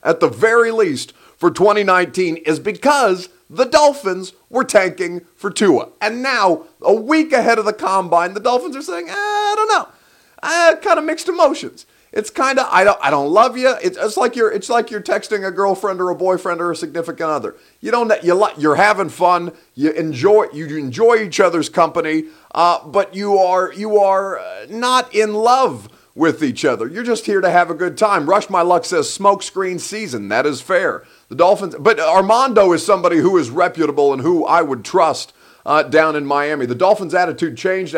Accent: American